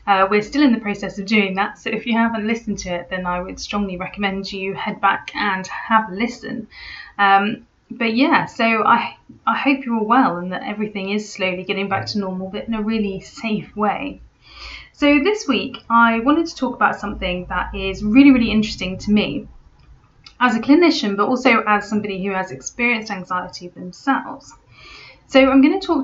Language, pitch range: English, 195-240 Hz